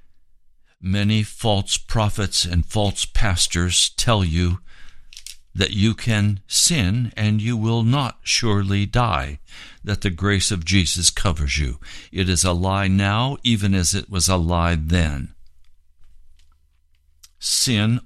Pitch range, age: 75-110 Hz, 60-79